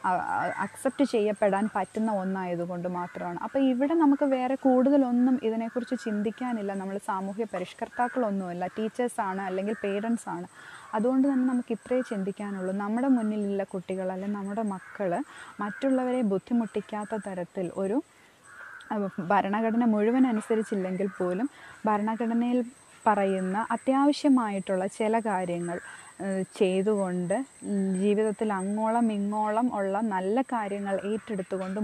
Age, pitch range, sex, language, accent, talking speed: 20-39, 190-230 Hz, female, Malayalam, native, 95 wpm